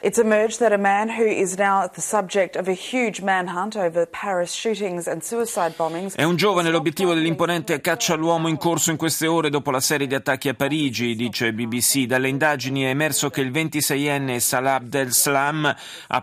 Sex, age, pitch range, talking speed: male, 30-49, 125-175 Hz, 120 wpm